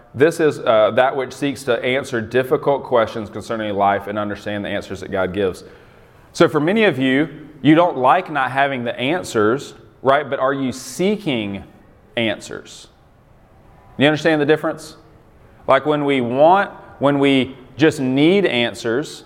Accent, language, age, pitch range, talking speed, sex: American, English, 30-49, 110-140 Hz, 155 wpm, male